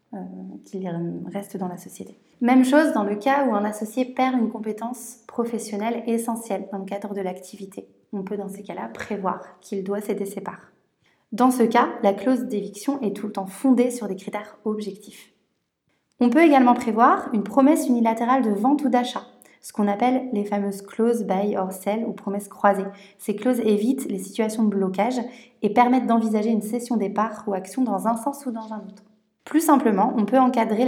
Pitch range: 200-245 Hz